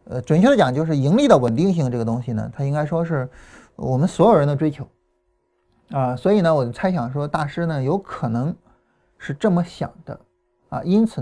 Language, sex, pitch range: Chinese, male, 130-205 Hz